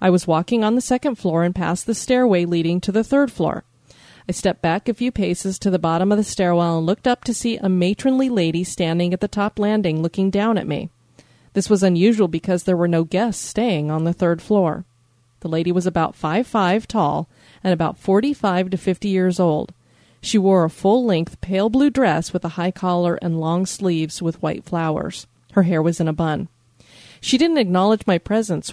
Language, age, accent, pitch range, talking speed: English, 30-49, American, 170-210 Hz, 205 wpm